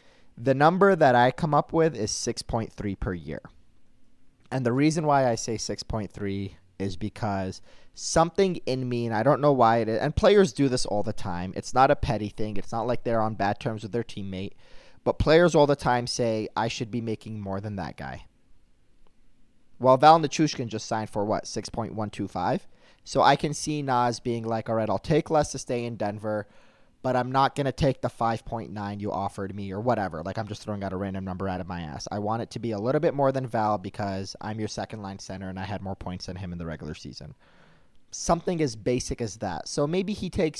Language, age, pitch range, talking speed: English, 30-49, 100-130 Hz, 225 wpm